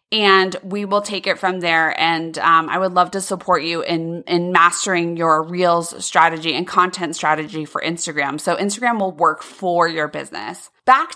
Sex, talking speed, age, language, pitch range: female, 185 wpm, 30-49, English, 170-225 Hz